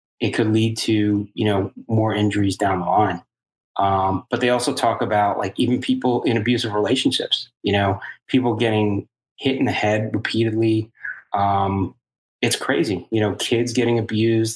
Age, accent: 30-49, American